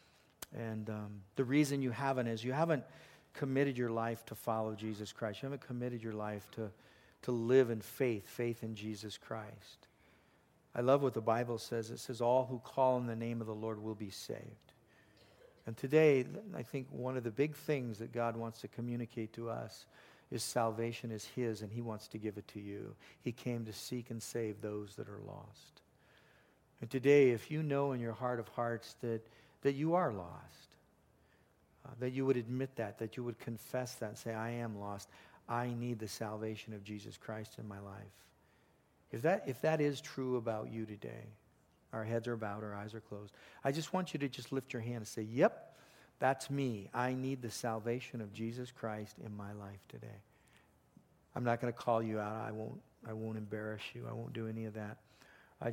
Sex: male